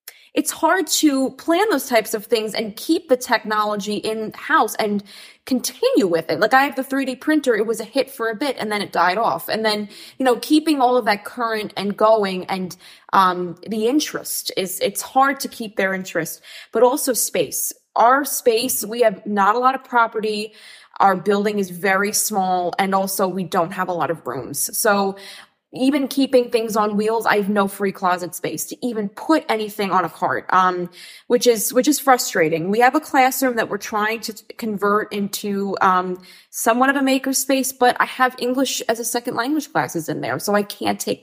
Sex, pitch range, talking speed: female, 200-250 Hz, 205 wpm